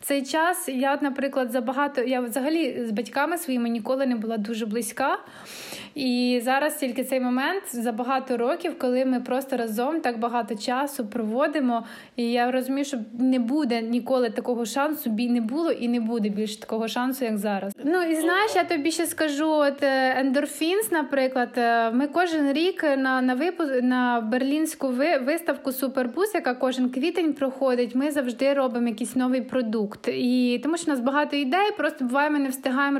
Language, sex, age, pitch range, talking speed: Ukrainian, female, 20-39, 245-285 Hz, 175 wpm